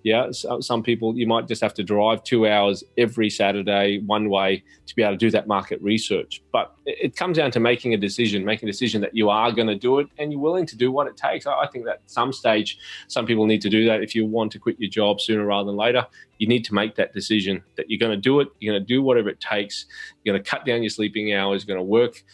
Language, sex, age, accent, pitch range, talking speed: English, male, 20-39, Australian, 105-120 Hz, 270 wpm